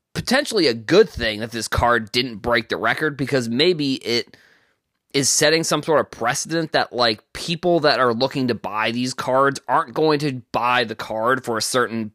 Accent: American